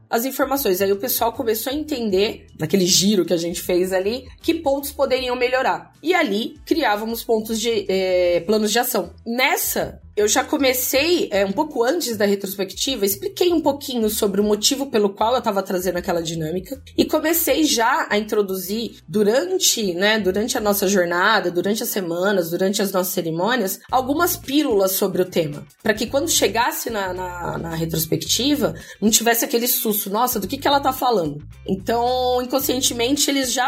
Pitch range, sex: 195-255 Hz, female